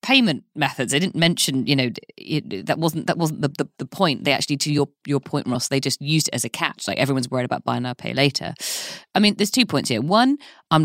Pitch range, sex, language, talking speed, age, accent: 125-165 Hz, female, English, 260 wpm, 20-39, British